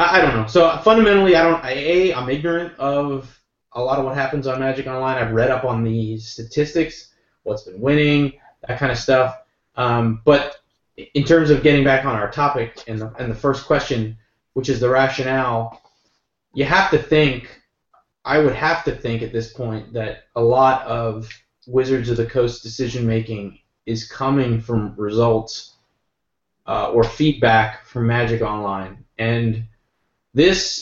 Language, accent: English, American